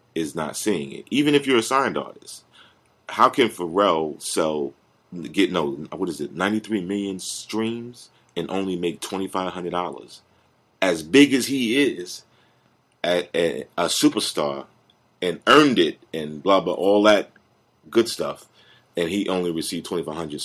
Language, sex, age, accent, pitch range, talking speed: English, male, 30-49, American, 85-120 Hz, 155 wpm